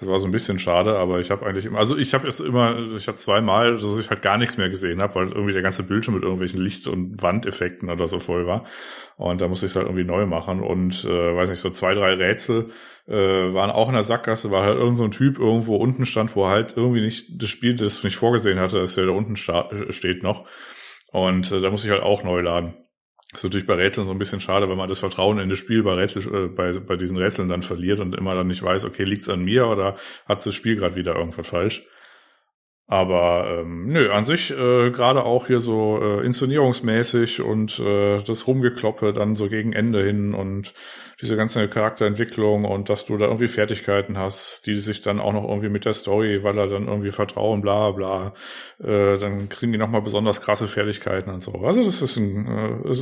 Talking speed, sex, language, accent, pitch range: 230 wpm, male, German, German, 95-110 Hz